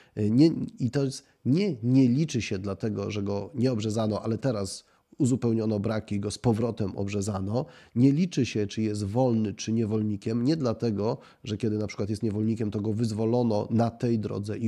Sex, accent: male, native